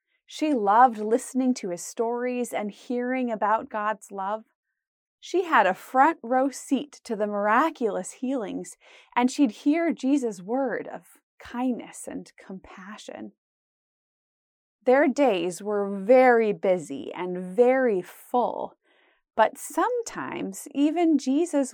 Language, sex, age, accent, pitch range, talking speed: English, female, 20-39, American, 210-280 Hz, 115 wpm